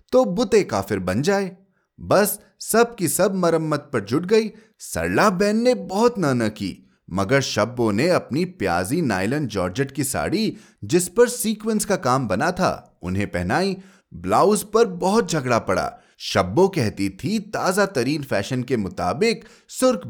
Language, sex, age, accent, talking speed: Hindi, male, 30-49, native, 150 wpm